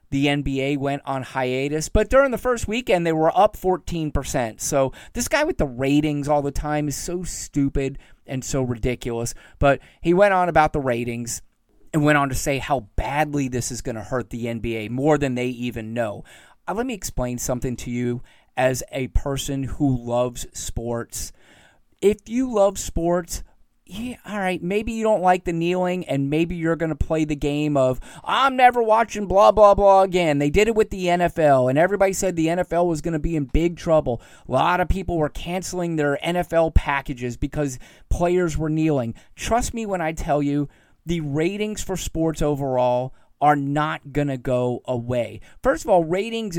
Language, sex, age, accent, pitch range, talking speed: English, male, 30-49, American, 135-180 Hz, 190 wpm